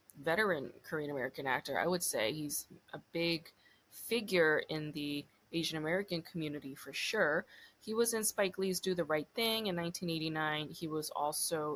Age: 20-39